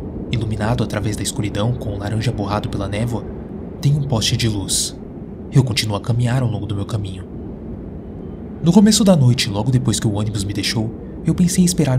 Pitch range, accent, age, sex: 100-130 Hz, Brazilian, 20-39, male